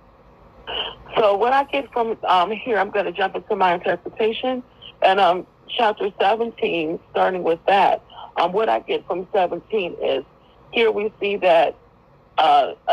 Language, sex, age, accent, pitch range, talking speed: English, female, 40-59, American, 170-235 Hz, 155 wpm